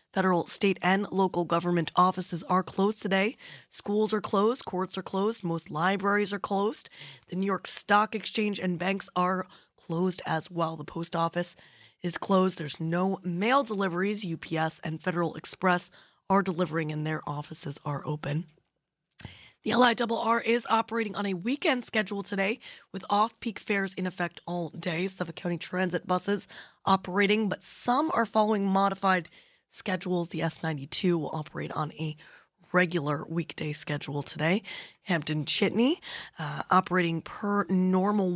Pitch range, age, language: 165-205 Hz, 20-39, English